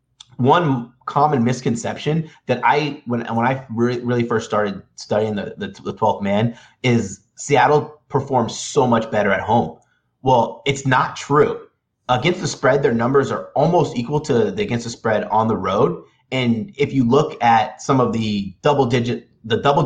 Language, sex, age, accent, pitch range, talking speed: English, male, 30-49, American, 115-150 Hz, 170 wpm